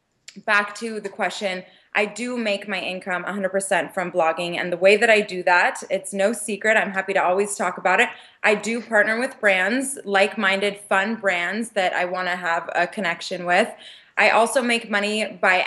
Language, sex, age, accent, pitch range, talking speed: English, female, 20-39, American, 185-220 Hz, 190 wpm